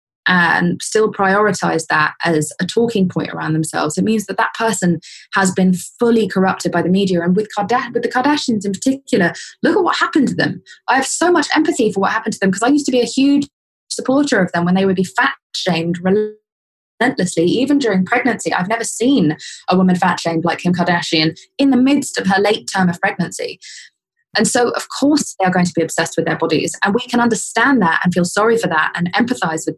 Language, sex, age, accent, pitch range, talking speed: English, female, 20-39, British, 175-235 Hz, 220 wpm